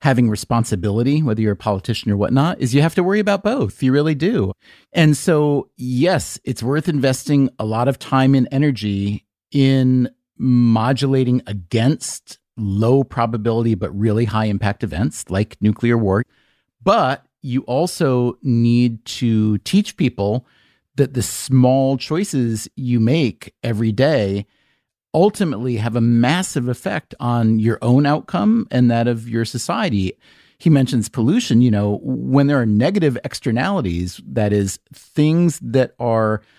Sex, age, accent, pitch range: male, 40-59, American, 110-145 Hz